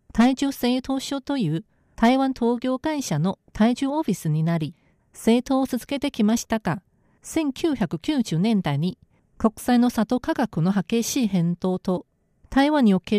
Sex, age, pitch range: female, 40-59, 190-260 Hz